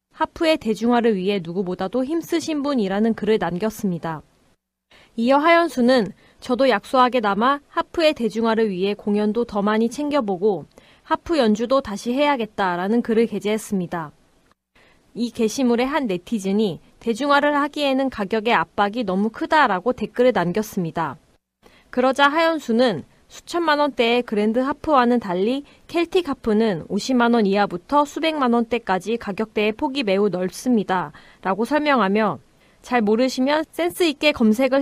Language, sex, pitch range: Korean, female, 205-270 Hz